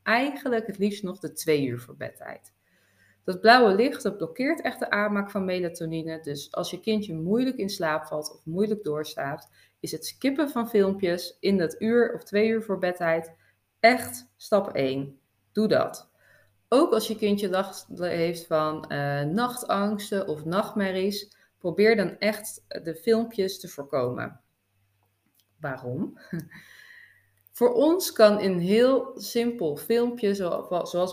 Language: Dutch